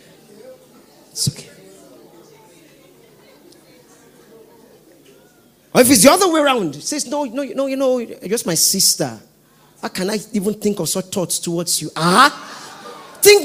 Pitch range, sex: 130-215 Hz, male